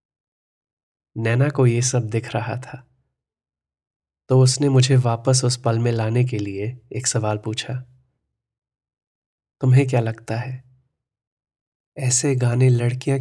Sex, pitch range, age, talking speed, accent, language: male, 115-130 Hz, 30-49, 120 wpm, native, Hindi